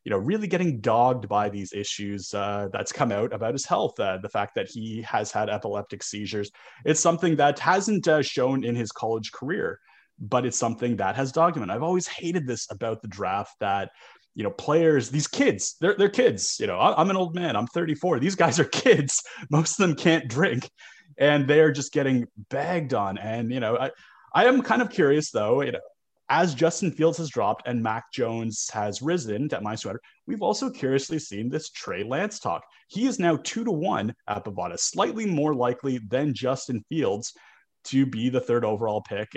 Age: 30-49